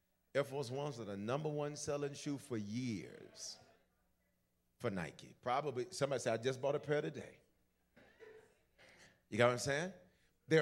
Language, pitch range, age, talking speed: English, 115-170 Hz, 40-59, 160 wpm